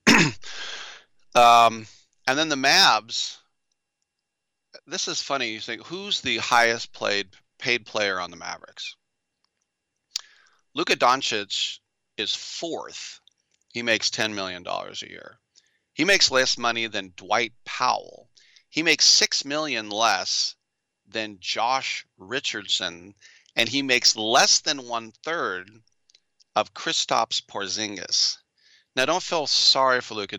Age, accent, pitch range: 40-59, American, 100-125 Hz